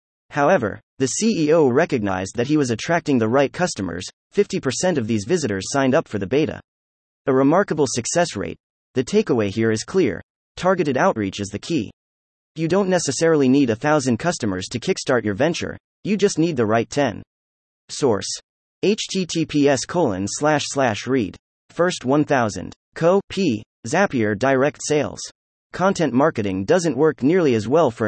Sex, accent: male, American